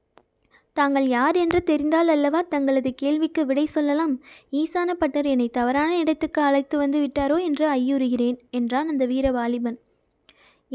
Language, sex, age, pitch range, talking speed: Tamil, female, 20-39, 265-315 Hz, 125 wpm